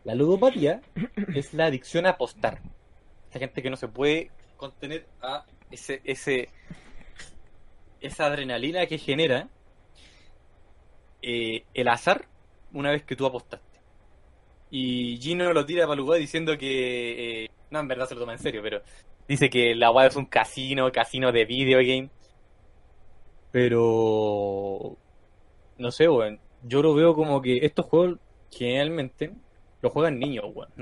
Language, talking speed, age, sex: Spanish, 145 wpm, 20-39, male